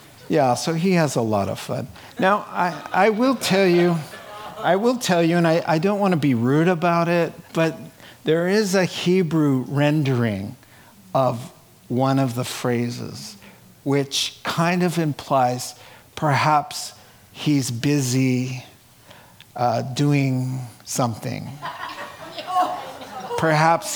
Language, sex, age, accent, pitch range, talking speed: English, male, 50-69, American, 130-175 Hz, 125 wpm